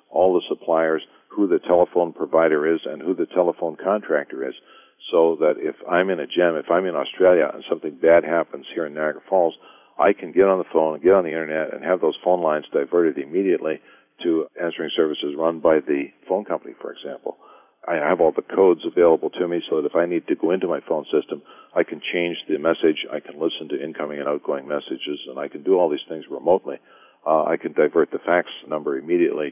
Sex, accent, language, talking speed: male, American, English, 220 wpm